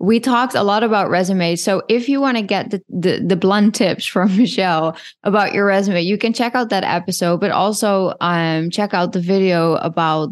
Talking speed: 210 wpm